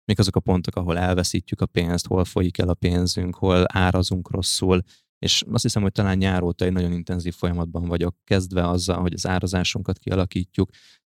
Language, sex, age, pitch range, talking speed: Hungarian, male, 20-39, 90-95 Hz, 180 wpm